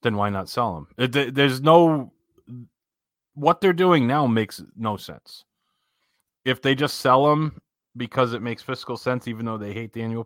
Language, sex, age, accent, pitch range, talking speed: English, male, 30-49, American, 100-125 Hz, 175 wpm